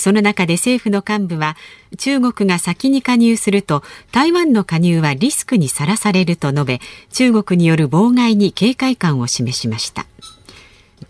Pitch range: 150-235 Hz